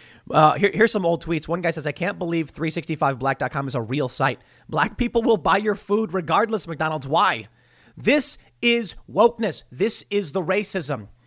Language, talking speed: English, 175 wpm